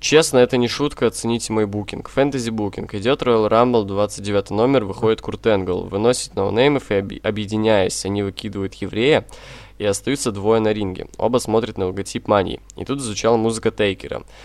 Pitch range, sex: 100-115 Hz, male